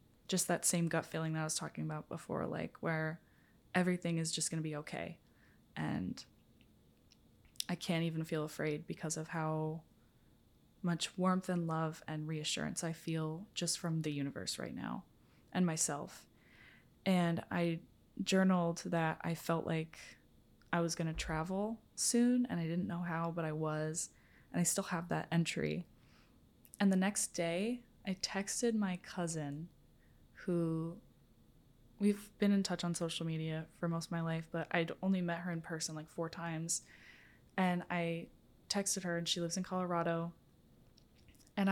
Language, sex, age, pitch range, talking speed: English, female, 20-39, 160-185 Hz, 160 wpm